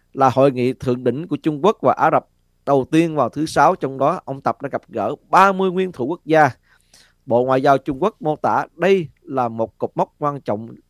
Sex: male